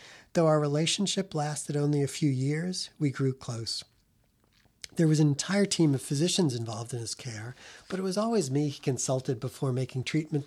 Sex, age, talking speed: male, 40-59, 185 wpm